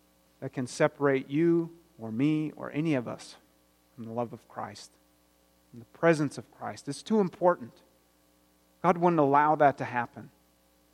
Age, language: 40-59, English